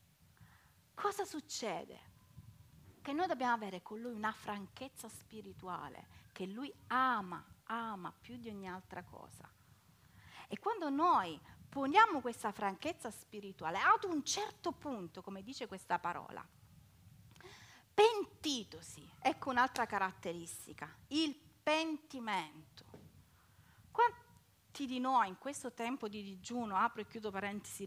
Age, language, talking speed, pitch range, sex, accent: 40-59, Italian, 115 wpm, 200-300 Hz, female, native